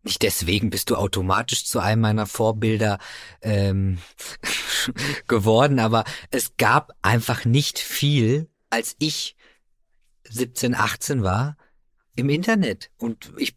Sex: male